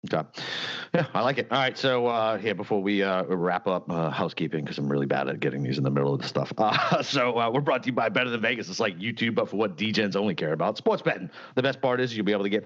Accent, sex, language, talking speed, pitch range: American, male, English, 295 wpm, 95-125 Hz